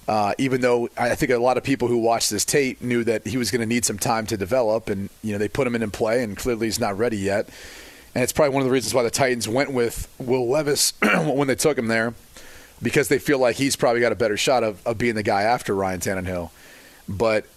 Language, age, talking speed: English, 30-49, 265 wpm